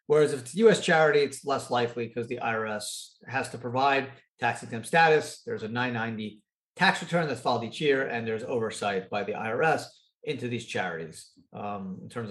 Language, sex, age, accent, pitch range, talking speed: English, male, 40-59, American, 120-170 Hz, 190 wpm